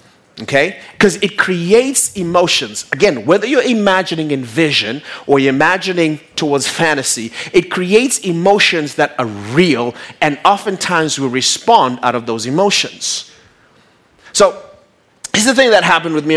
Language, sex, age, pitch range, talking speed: English, male, 30-49, 130-190 Hz, 140 wpm